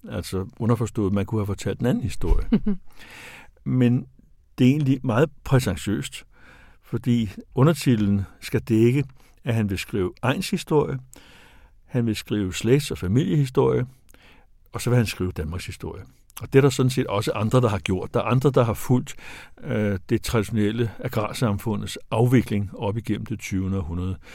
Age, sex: 60-79, male